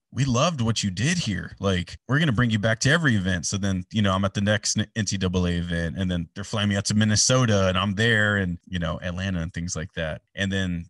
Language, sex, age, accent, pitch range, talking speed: English, male, 30-49, American, 95-130 Hz, 260 wpm